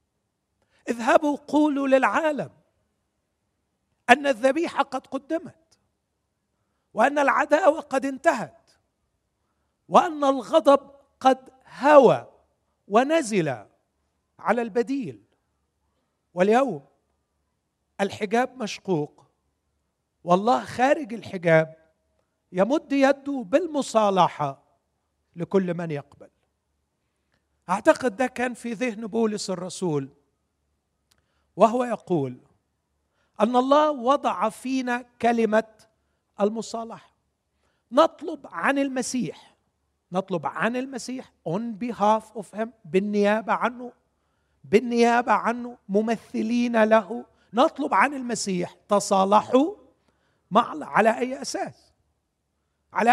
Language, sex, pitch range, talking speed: Arabic, male, 180-260 Hz, 80 wpm